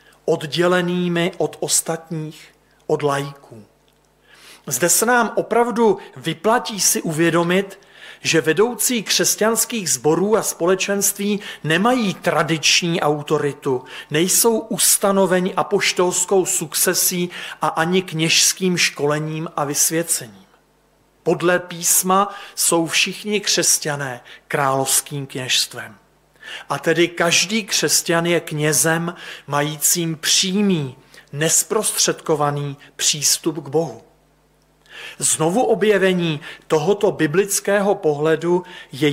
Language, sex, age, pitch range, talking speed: Slovak, male, 40-59, 150-185 Hz, 85 wpm